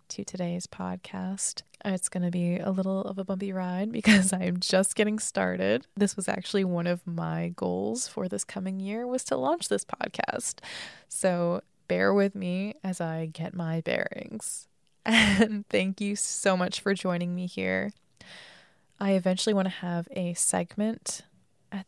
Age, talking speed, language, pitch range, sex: 20-39, 165 wpm, English, 175-215 Hz, female